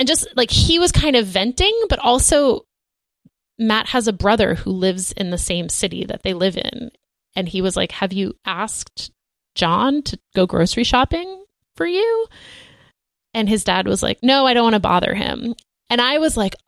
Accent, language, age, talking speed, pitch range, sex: American, English, 20-39, 195 wpm, 190-260 Hz, female